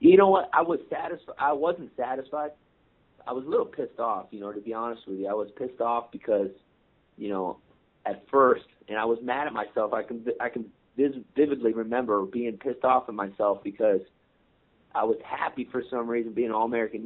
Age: 30-49